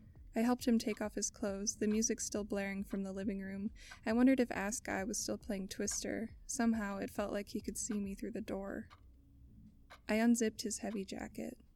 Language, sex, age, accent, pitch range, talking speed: English, female, 20-39, American, 205-230 Hz, 205 wpm